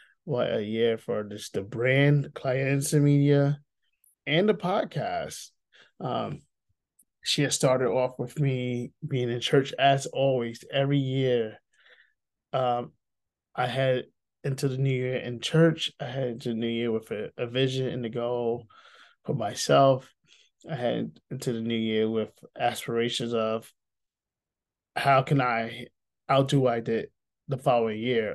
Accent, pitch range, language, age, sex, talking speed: American, 115-135 Hz, English, 20-39, male, 150 wpm